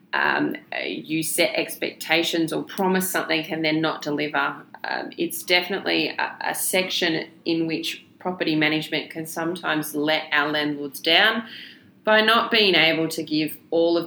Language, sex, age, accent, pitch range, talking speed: English, female, 20-39, Australian, 155-180 Hz, 150 wpm